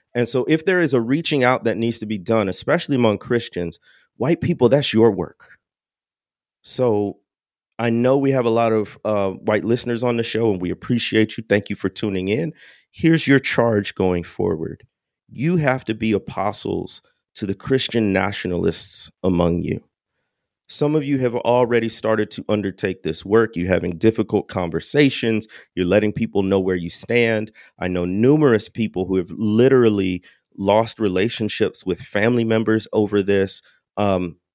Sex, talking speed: male, 165 wpm